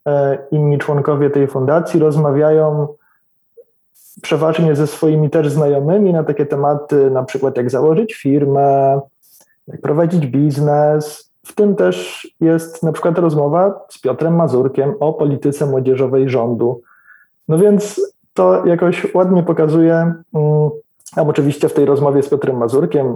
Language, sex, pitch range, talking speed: Polish, male, 145-170 Hz, 125 wpm